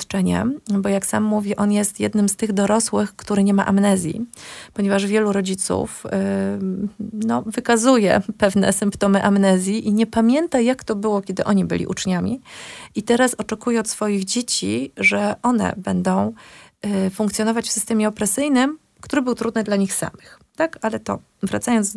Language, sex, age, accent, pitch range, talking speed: Polish, female, 30-49, native, 195-225 Hz, 160 wpm